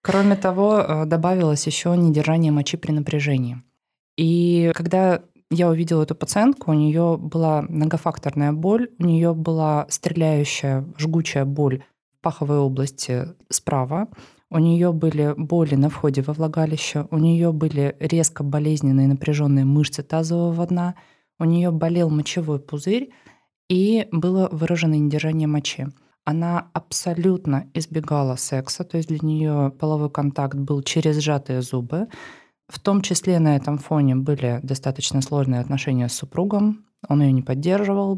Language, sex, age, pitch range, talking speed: Russian, female, 20-39, 145-175 Hz, 135 wpm